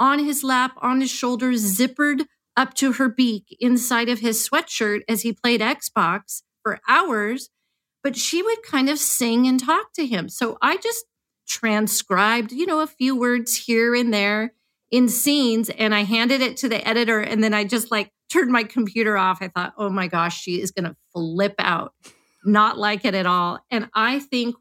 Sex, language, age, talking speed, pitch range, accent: female, English, 40-59, 195 wpm, 210-270 Hz, American